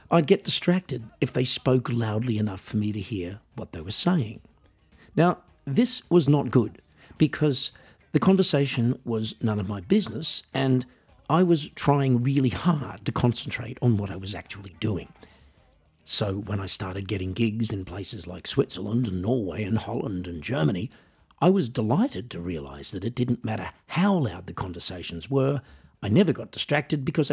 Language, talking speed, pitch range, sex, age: English, 170 wpm, 105-140 Hz, male, 50-69